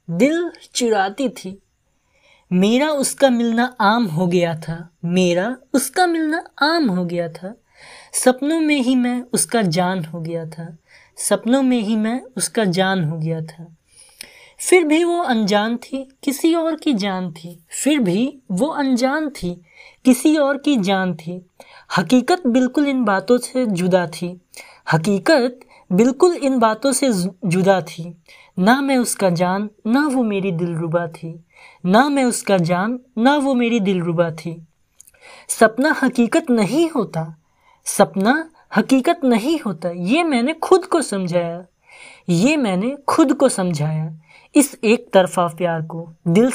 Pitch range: 180-275 Hz